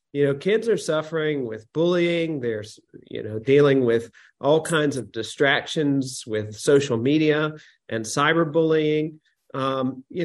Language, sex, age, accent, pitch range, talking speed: English, male, 40-59, American, 130-160 Hz, 140 wpm